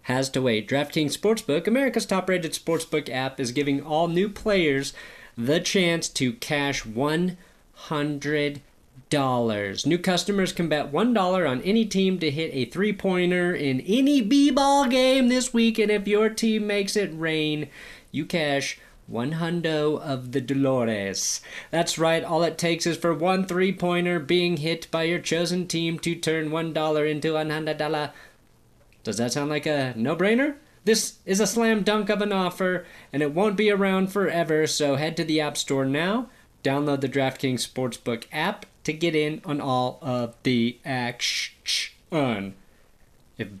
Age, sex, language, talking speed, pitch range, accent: 30-49, male, English, 155 wpm, 140-190 Hz, American